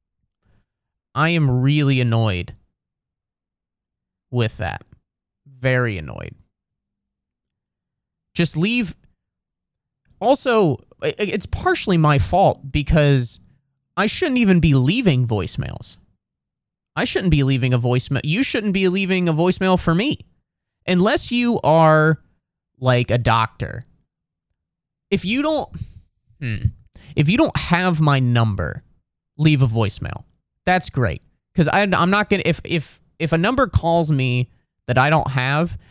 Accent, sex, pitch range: American, male, 120-175 Hz